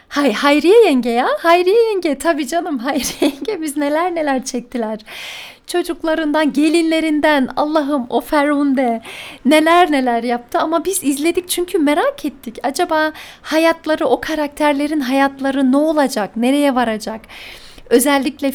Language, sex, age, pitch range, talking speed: Turkish, female, 40-59, 245-305 Hz, 125 wpm